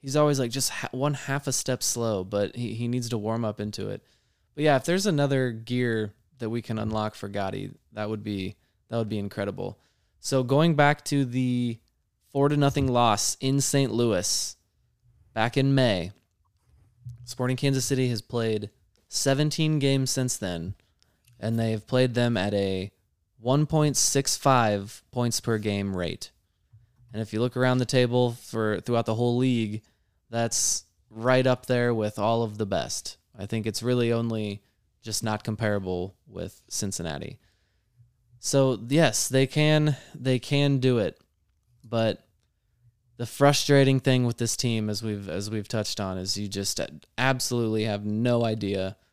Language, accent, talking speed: English, American, 160 wpm